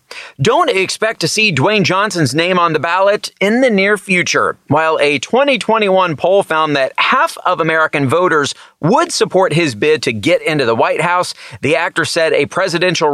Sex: male